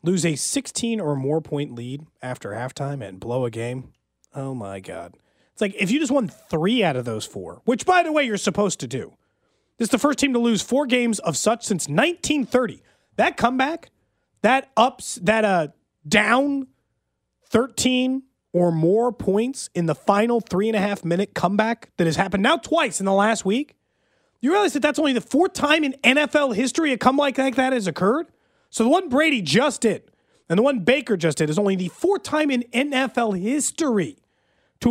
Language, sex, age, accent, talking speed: English, male, 30-49, American, 190 wpm